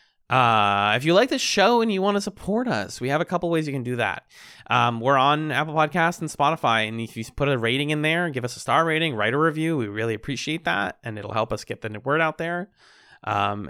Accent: American